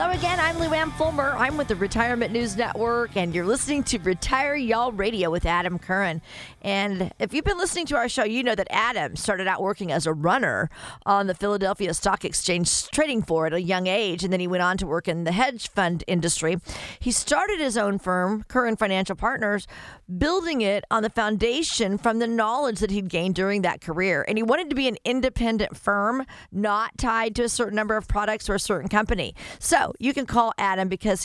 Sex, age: female, 40-59